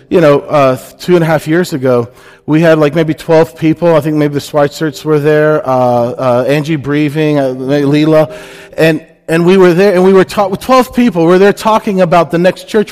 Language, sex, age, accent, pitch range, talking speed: English, male, 40-59, American, 140-180 Hz, 220 wpm